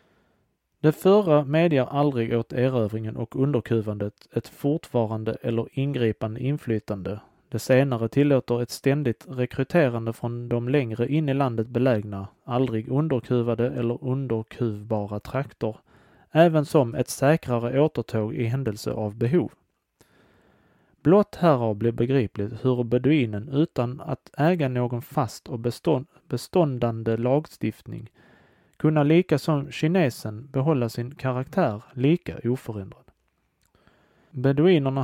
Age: 30-49